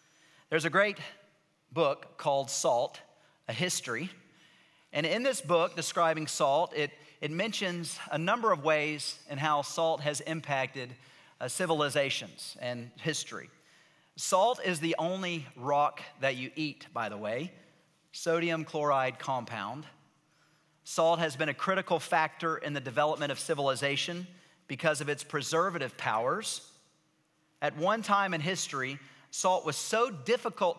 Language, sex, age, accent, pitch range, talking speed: English, male, 40-59, American, 145-170 Hz, 135 wpm